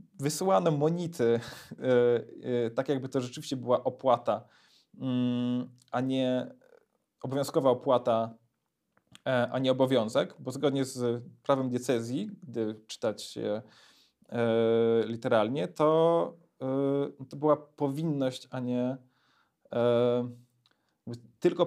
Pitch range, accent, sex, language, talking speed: 125-155 Hz, native, male, Polish, 85 wpm